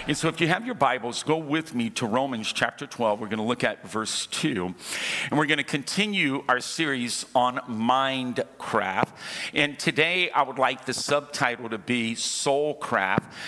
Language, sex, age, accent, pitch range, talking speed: English, male, 50-69, American, 120-155 Hz, 185 wpm